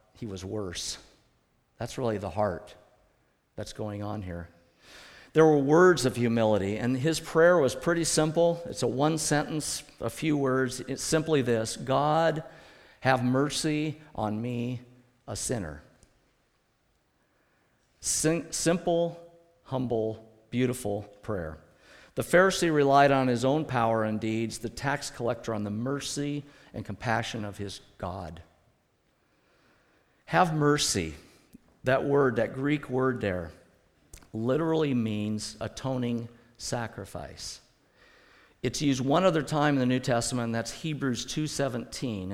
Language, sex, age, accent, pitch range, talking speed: English, male, 50-69, American, 110-145 Hz, 125 wpm